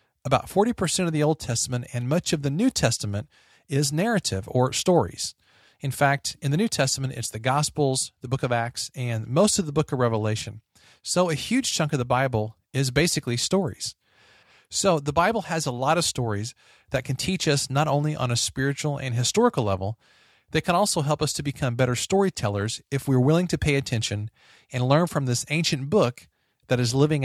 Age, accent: 40-59, American